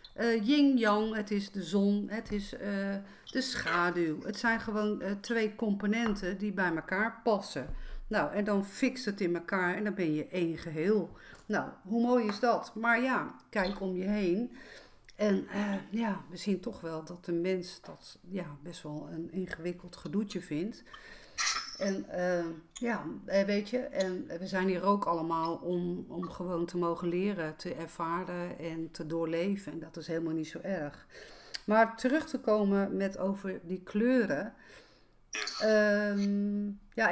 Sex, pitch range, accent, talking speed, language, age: female, 180-230 Hz, Dutch, 160 wpm, Dutch, 50-69